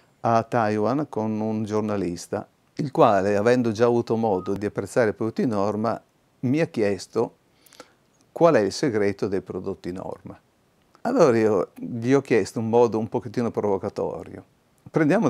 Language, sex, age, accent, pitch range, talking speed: Italian, male, 50-69, native, 110-140 Hz, 145 wpm